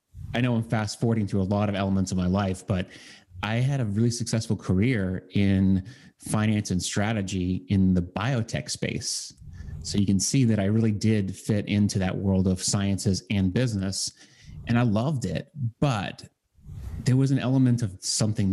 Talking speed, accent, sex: 180 wpm, American, male